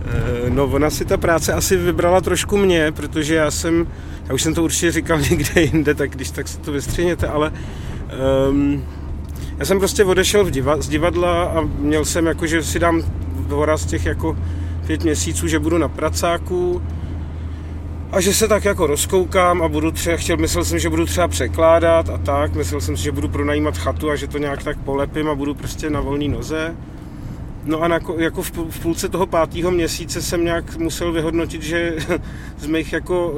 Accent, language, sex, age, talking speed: native, Czech, male, 30-49, 185 wpm